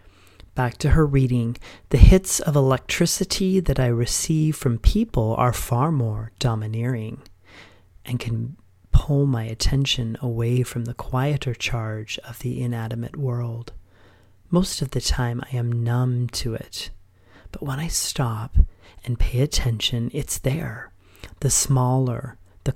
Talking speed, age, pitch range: 135 wpm, 30-49, 105-135 Hz